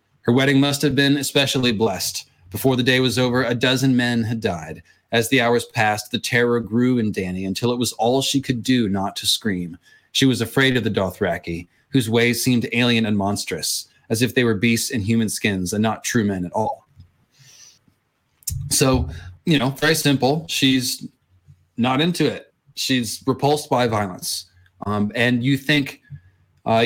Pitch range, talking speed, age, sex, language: 115-135 Hz, 180 wpm, 20-39, male, English